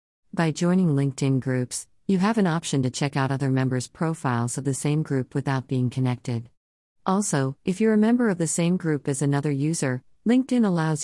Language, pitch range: English, 130-160 Hz